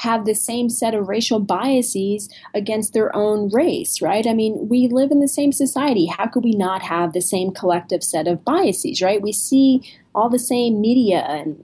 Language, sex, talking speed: English, female, 200 wpm